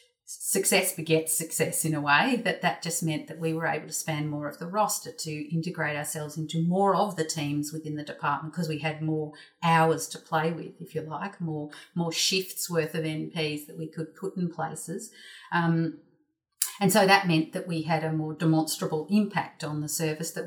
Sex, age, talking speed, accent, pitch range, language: female, 40-59, 205 wpm, Australian, 155-180 Hz, English